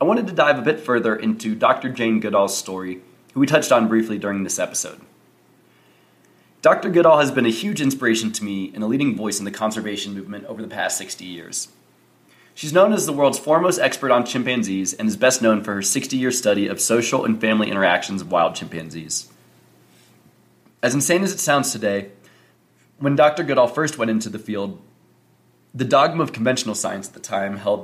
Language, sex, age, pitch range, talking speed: English, male, 20-39, 95-120 Hz, 195 wpm